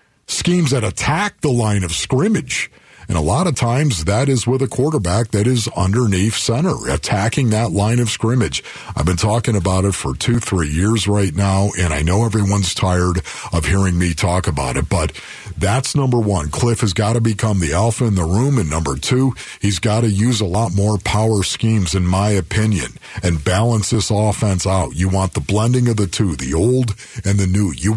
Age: 50-69